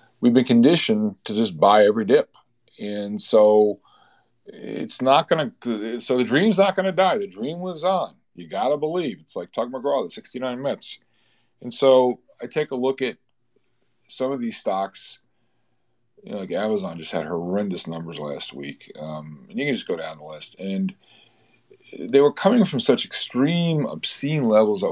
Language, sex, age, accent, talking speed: English, male, 40-59, American, 180 wpm